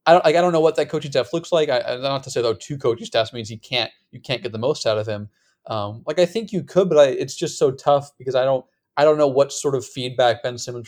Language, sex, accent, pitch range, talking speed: English, male, American, 115-145 Hz, 305 wpm